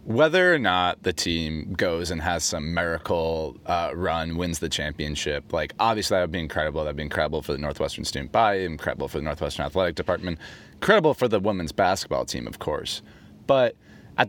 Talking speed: 190 wpm